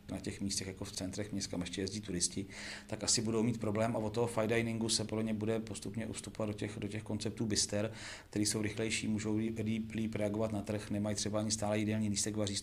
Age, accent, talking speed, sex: 40-59, native, 220 wpm, male